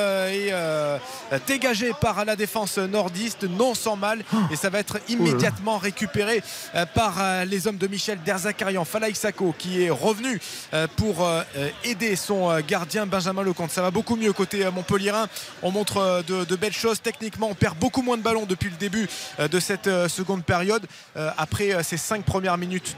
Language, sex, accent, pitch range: French, male, French, 180-235 Hz